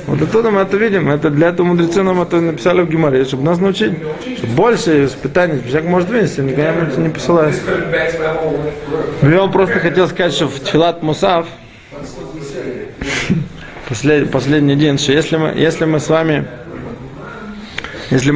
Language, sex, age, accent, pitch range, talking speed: Russian, male, 20-39, native, 140-170 Hz, 145 wpm